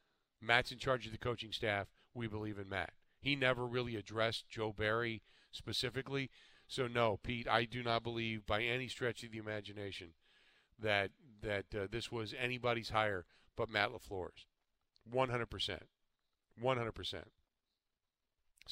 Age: 40-59